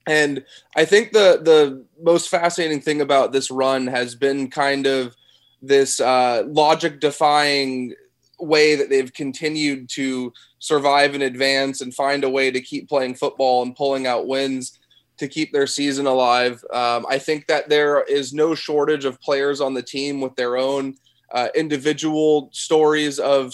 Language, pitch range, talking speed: English, 130-150 Hz, 160 wpm